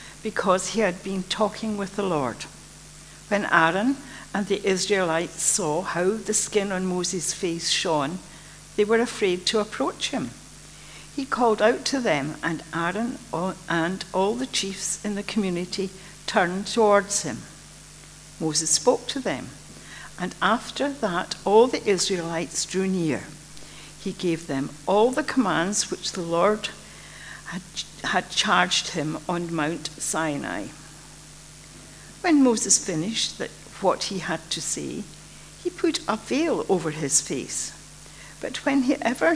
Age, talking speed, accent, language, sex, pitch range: 60-79, 135 wpm, British, English, female, 165-215 Hz